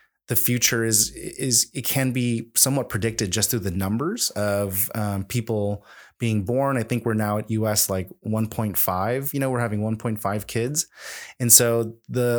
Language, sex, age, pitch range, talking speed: English, male, 20-39, 105-120 Hz, 170 wpm